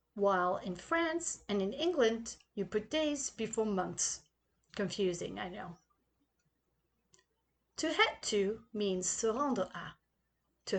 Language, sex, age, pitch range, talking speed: English, female, 40-59, 195-290 Hz, 120 wpm